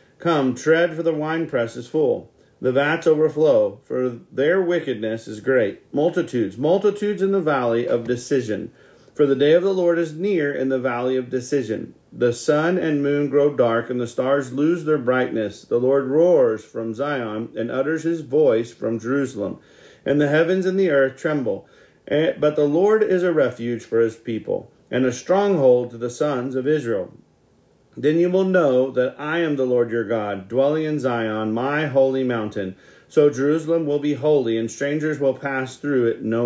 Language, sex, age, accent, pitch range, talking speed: English, male, 40-59, American, 125-160 Hz, 185 wpm